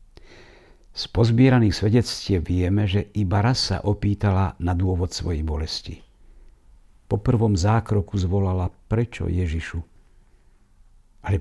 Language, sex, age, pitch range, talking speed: Slovak, male, 60-79, 85-105 Hz, 95 wpm